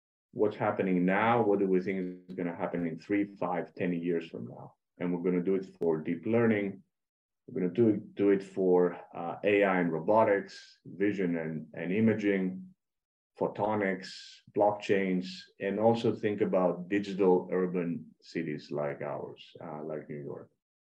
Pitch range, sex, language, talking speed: 85-105 Hz, male, English, 155 wpm